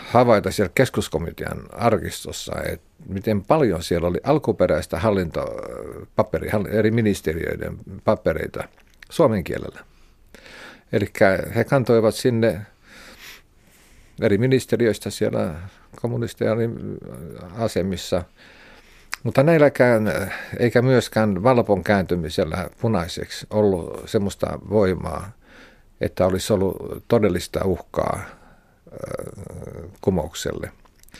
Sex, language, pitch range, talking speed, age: male, Finnish, 90-115 Hz, 75 wpm, 50-69